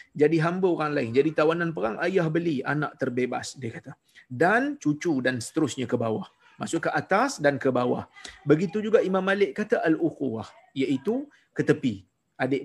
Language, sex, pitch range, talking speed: Malay, male, 130-175 Hz, 170 wpm